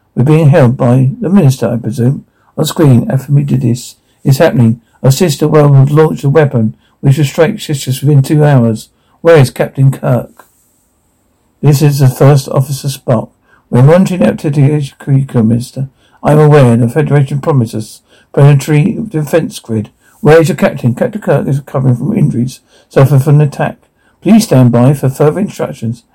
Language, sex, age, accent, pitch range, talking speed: English, male, 60-79, British, 120-150 Hz, 170 wpm